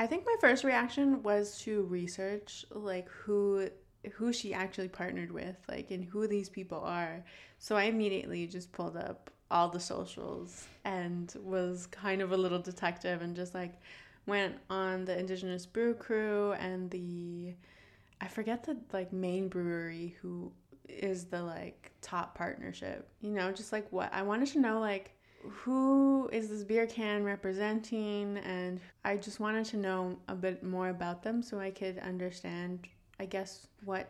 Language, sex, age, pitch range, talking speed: English, female, 20-39, 180-215 Hz, 165 wpm